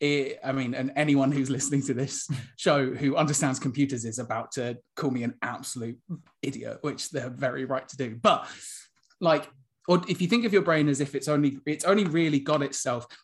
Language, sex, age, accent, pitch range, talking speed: English, male, 20-39, British, 130-155 Hz, 205 wpm